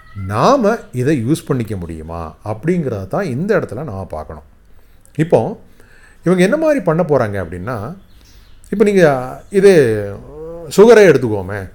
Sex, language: male, Tamil